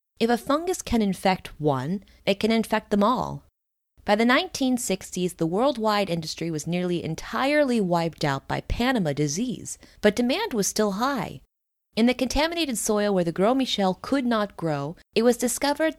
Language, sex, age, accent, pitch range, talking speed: English, female, 20-39, American, 160-230 Hz, 165 wpm